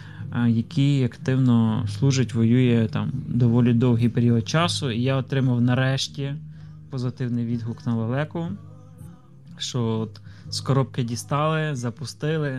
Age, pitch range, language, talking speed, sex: 20-39, 120-140 Hz, Ukrainian, 110 wpm, male